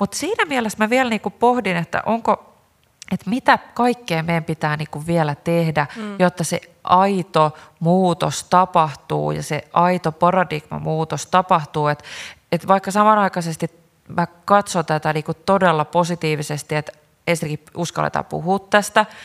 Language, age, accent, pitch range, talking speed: Finnish, 30-49, native, 155-185 Hz, 115 wpm